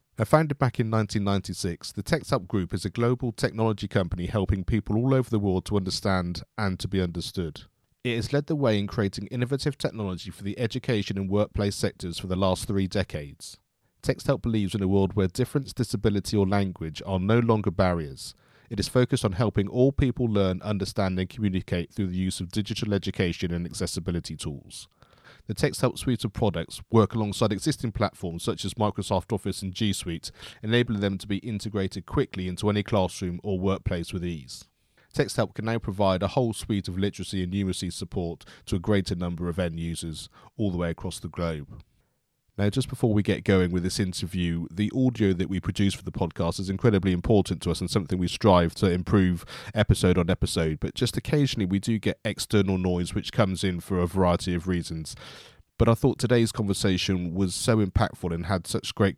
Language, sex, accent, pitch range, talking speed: English, male, British, 90-110 Hz, 195 wpm